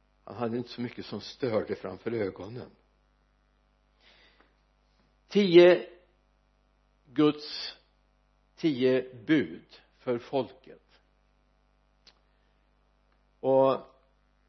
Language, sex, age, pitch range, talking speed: Swedish, male, 60-79, 105-155 Hz, 65 wpm